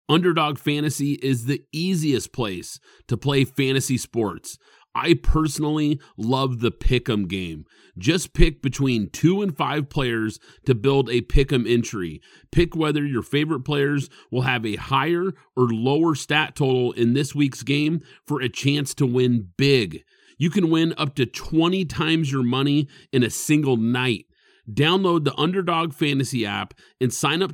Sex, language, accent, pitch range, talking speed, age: male, English, American, 125-160 Hz, 155 wpm, 40-59